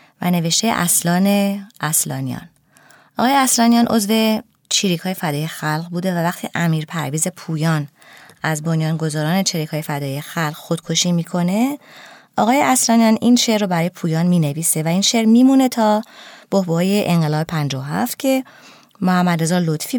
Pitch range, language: 165-220 Hz, Persian